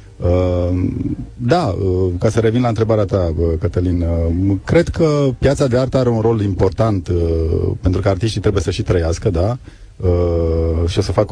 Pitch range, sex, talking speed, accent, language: 90-110 Hz, male, 185 wpm, native, Romanian